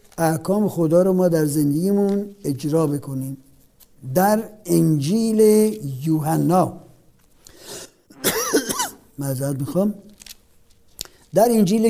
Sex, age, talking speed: male, 60-79, 75 wpm